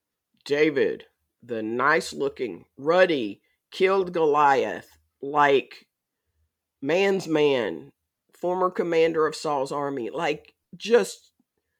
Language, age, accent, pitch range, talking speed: English, 50-69, American, 140-200 Hz, 80 wpm